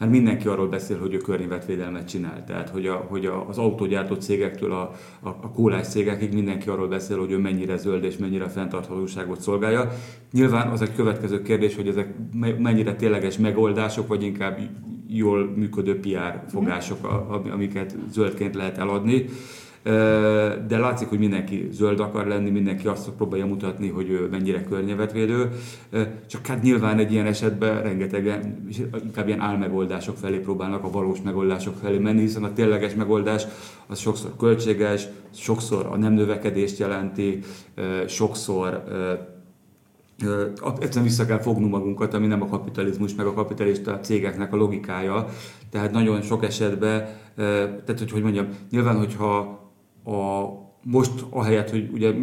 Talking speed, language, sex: 150 wpm, Hungarian, male